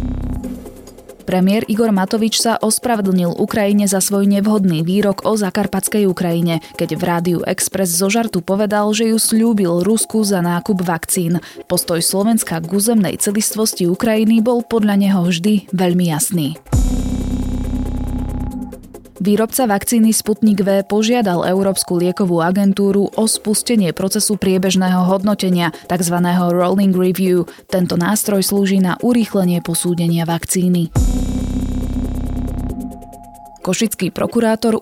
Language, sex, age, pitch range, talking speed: Slovak, female, 20-39, 175-210 Hz, 110 wpm